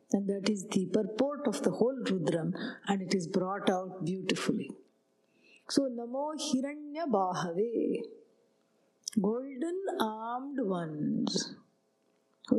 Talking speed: 105 wpm